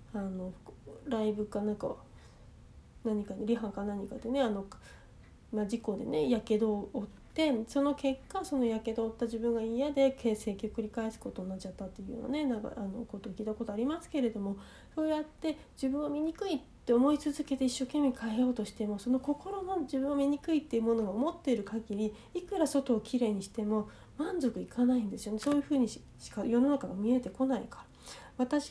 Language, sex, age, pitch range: Japanese, female, 40-59, 210-275 Hz